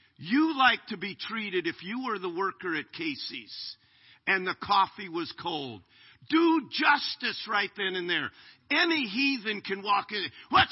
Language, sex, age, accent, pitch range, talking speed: English, male, 50-69, American, 200-300 Hz, 160 wpm